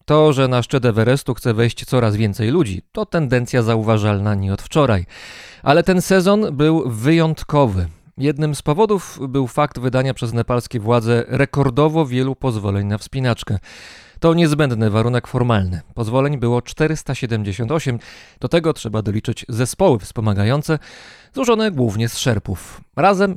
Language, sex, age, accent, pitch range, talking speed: Polish, male, 30-49, native, 115-150 Hz, 135 wpm